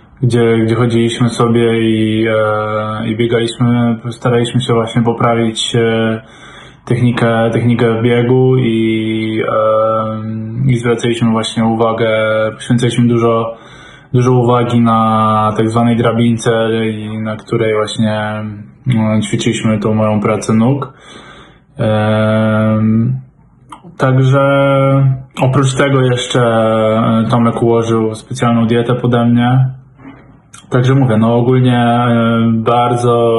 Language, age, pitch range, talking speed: Polish, 10-29, 110-120 Hz, 90 wpm